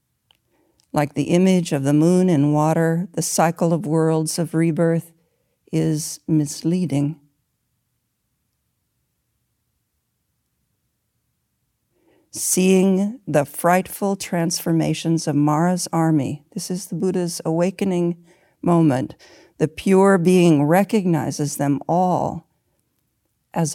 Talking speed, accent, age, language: 90 wpm, American, 50-69, English